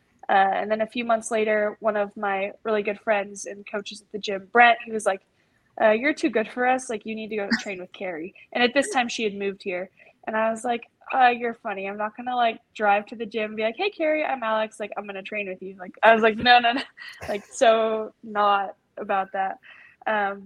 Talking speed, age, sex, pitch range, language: 255 wpm, 10-29, female, 200-235 Hz, English